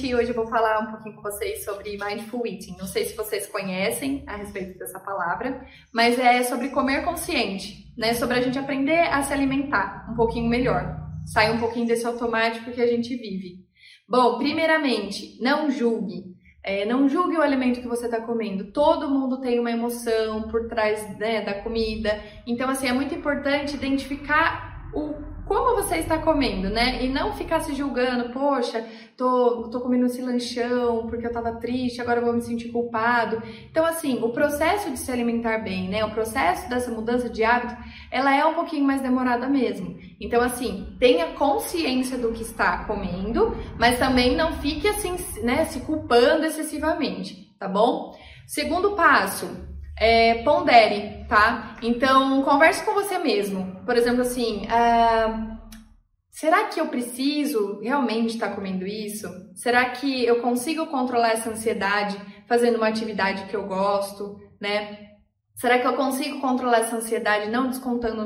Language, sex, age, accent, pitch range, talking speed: Portuguese, female, 20-39, Brazilian, 220-275 Hz, 165 wpm